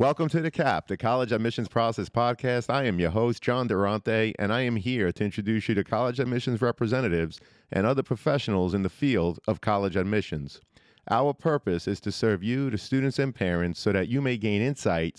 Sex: male